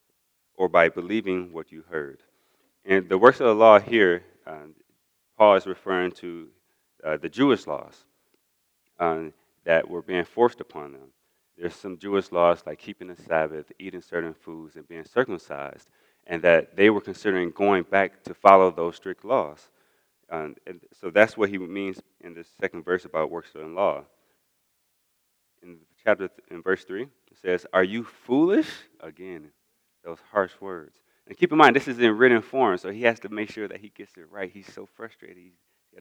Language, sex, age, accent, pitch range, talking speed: English, male, 30-49, American, 85-110 Hz, 180 wpm